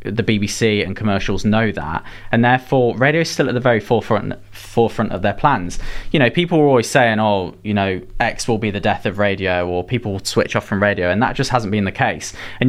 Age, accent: 20-39, British